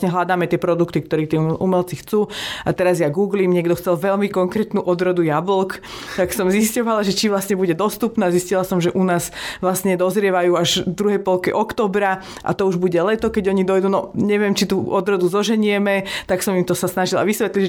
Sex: female